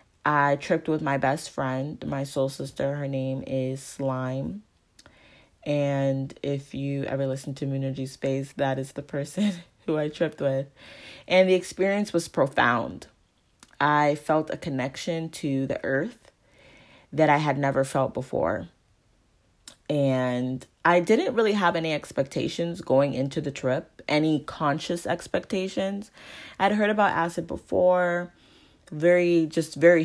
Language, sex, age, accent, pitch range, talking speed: English, female, 20-39, American, 135-165 Hz, 140 wpm